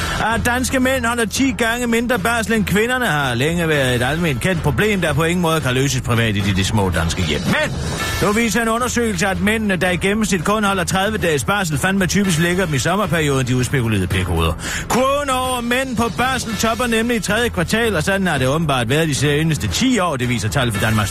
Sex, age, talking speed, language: male, 40-59, 215 wpm, Danish